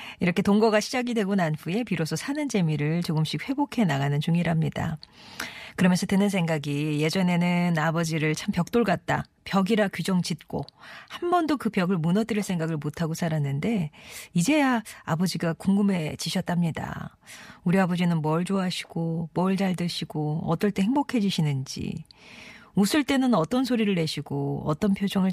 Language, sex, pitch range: Korean, female, 160-215 Hz